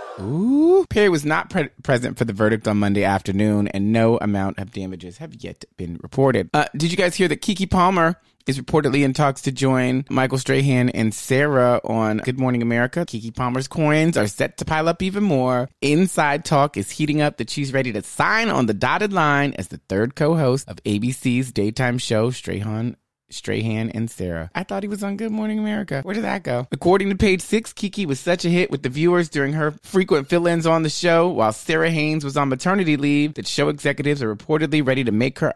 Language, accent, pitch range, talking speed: English, American, 110-155 Hz, 210 wpm